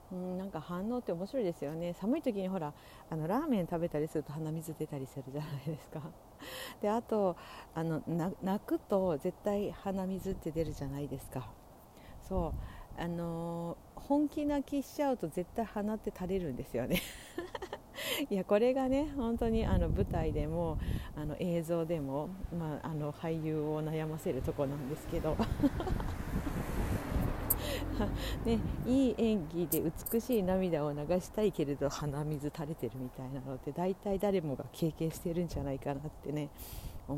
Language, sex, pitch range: Japanese, female, 145-195 Hz